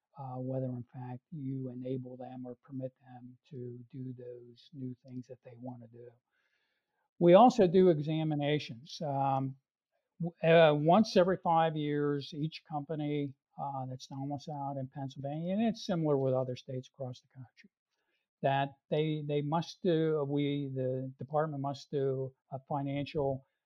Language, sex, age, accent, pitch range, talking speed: English, male, 60-79, American, 130-145 Hz, 150 wpm